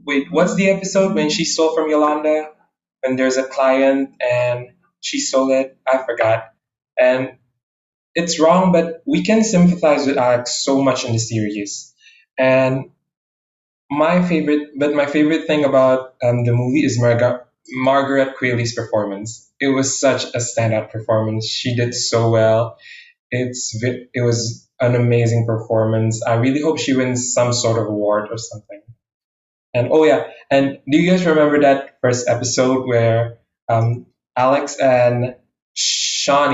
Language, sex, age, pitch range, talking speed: Indonesian, male, 20-39, 115-145 Hz, 150 wpm